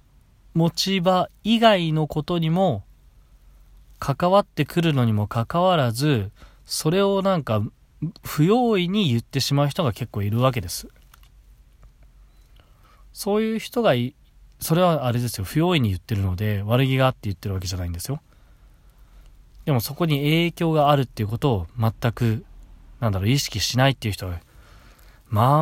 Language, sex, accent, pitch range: Japanese, male, native, 100-140 Hz